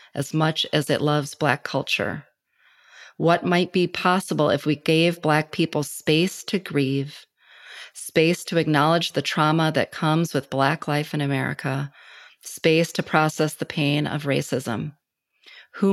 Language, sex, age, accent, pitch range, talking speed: English, female, 30-49, American, 150-175 Hz, 145 wpm